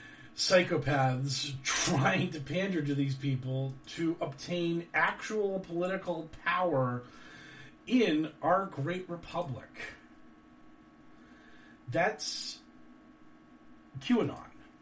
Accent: American